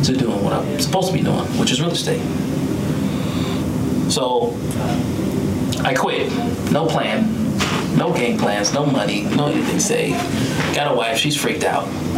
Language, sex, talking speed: English, male, 160 wpm